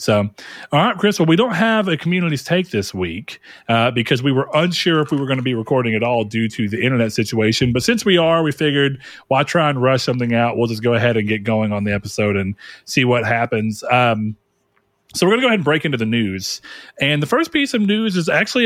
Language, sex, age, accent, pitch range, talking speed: English, male, 40-59, American, 115-170 Hz, 265 wpm